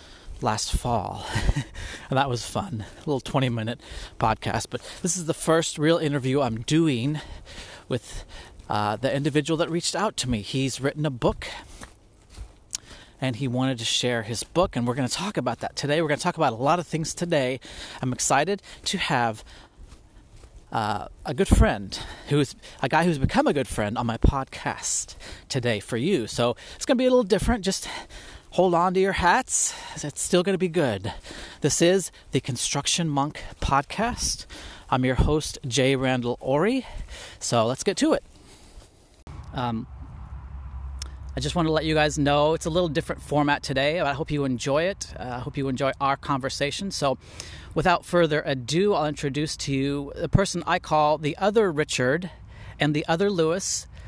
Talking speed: 180 wpm